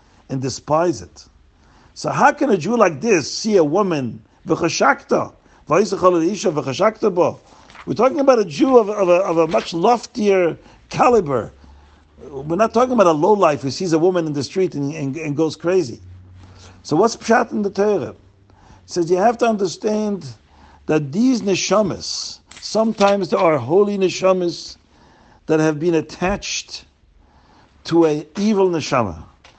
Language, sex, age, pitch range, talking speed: English, male, 50-69, 145-210 Hz, 145 wpm